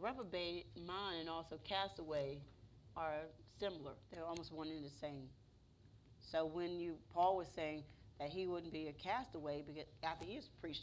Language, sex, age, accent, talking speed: English, female, 40-59, American, 160 wpm